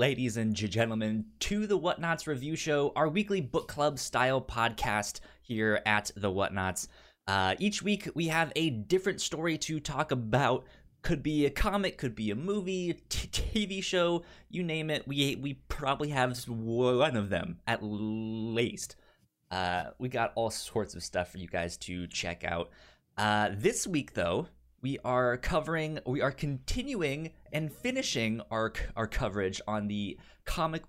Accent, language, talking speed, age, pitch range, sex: American, English, 155 wpm, 20-39, 100-150 Hz, male